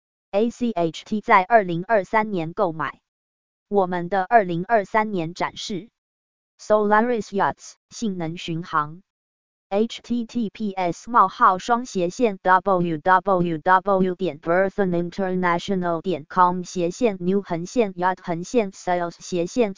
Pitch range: 170-215 Hz